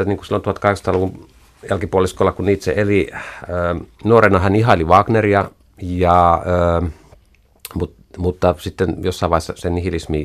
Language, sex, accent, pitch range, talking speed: Finnish, male, native, 80-100 Hz, 130 wpm